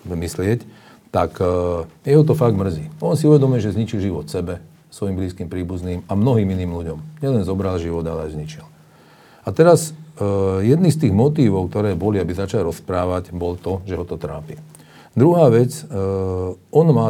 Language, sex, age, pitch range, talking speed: Slovak, male, 40-59, 90-115 Hz, 165 wpm